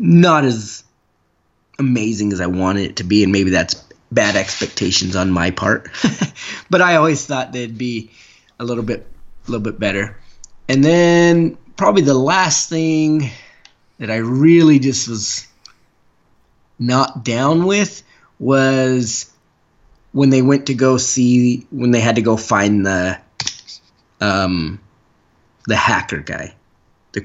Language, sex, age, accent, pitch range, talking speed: English, male, 20-39, American, 100-135 Hz, 140 wpm